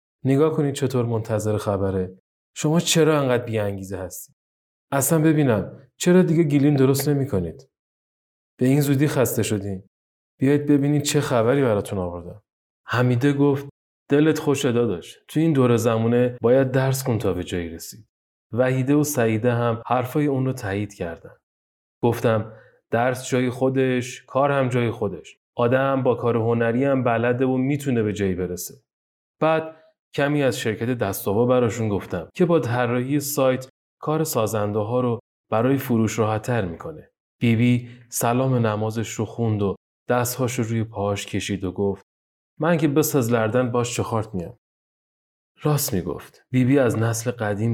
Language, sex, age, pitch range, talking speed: Persian, male, 30-49, 100-130 Hz, 150 wpm